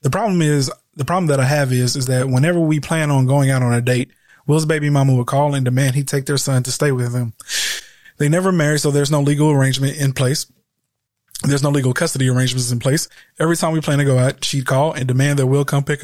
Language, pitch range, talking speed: English, 130-145 Hz, 250 wpm